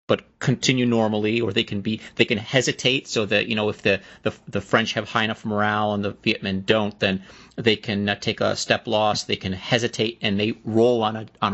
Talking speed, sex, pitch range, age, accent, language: 230 wpm, male, 110-130 Hz, 40-59, American, English